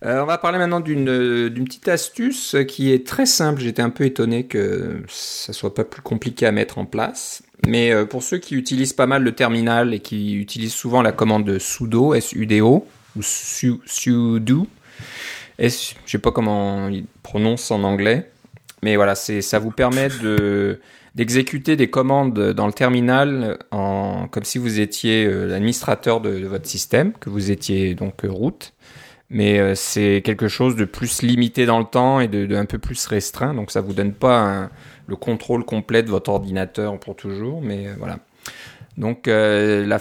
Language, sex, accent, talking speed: French, male, French, 180 wpm